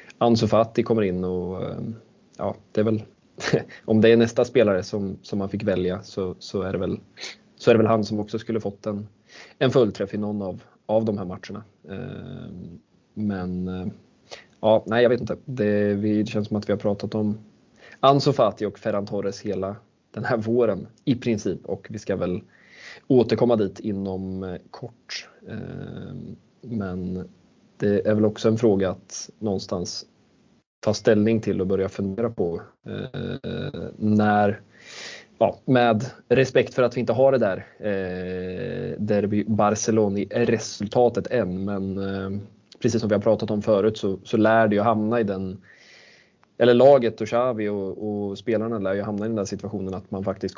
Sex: male